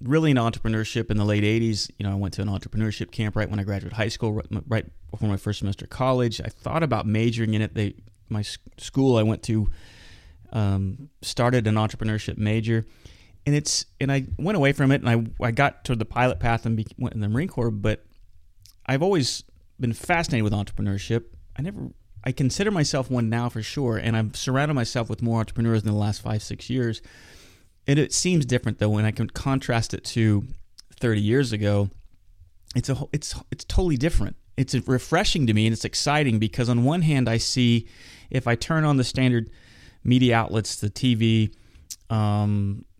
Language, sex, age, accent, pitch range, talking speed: English, male, 30-49, American, 105-125 Hz, 195 wpm